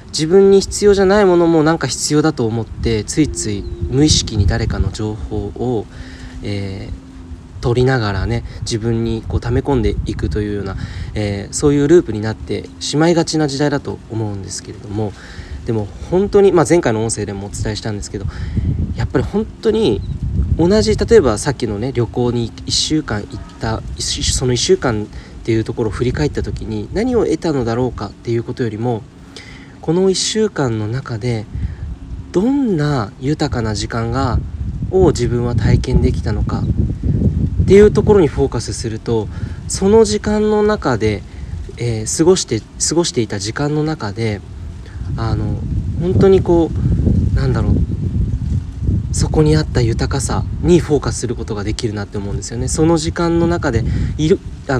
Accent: native